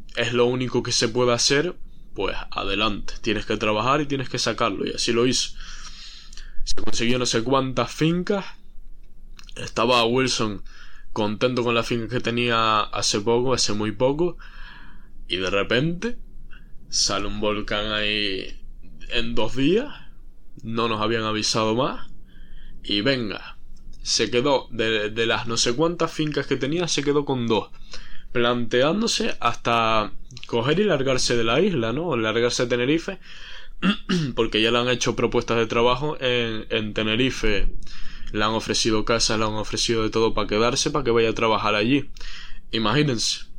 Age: 10-29